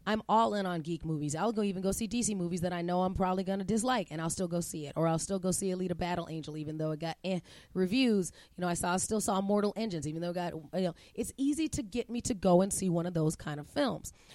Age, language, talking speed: 30-49, English, 295 wpm